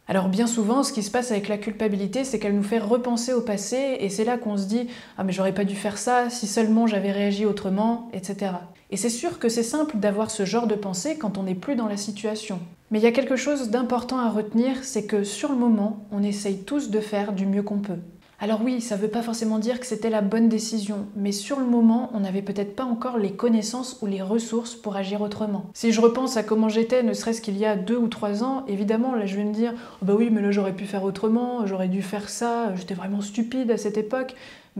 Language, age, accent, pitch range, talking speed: English, 20-39, French, 205-235 Hz, 255 wpm